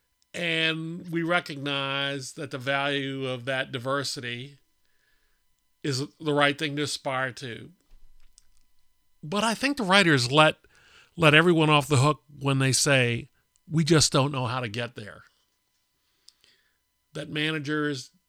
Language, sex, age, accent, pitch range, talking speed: English, male, 50-69, American, 125-155 Hz, 130 wpm